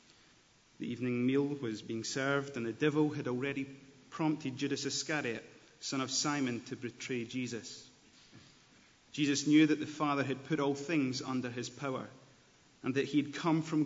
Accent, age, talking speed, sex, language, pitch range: British, 30-49, 165 wpm, male, English, 125-145 Hz